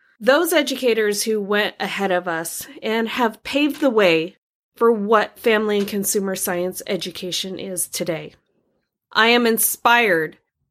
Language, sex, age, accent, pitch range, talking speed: English, female, 20-39, American, 185-220 Hz, 135 wpm